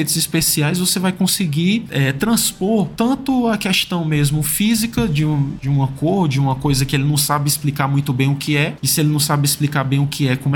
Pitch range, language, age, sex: 135-175 Hz, Portuguese, 20-39, male